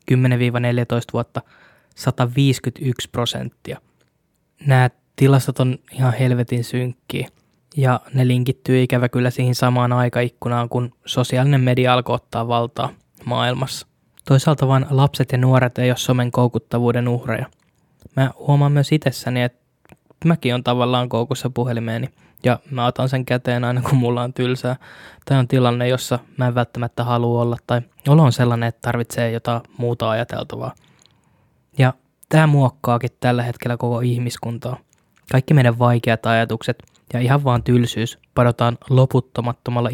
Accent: native